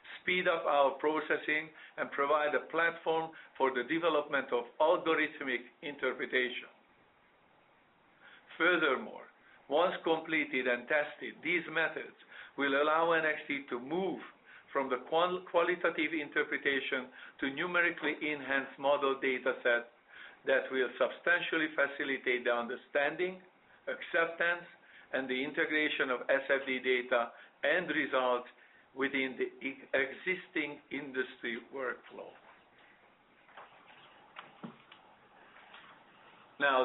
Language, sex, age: English, male, 50-69